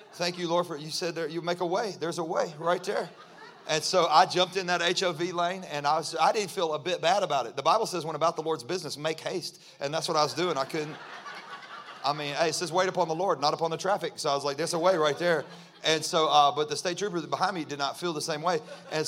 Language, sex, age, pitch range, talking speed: English, male, 30-49, 150-185 Hz, 285 wpm